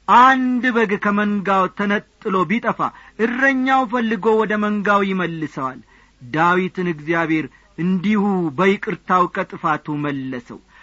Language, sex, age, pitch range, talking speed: Amharic, male, 40-59, 175-235 Hz, 90 wpm